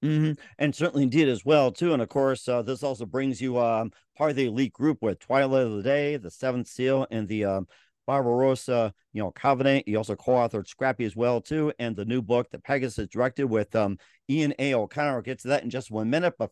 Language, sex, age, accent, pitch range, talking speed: English, male, 50-69, American, 115-145 Hz, 230 wpm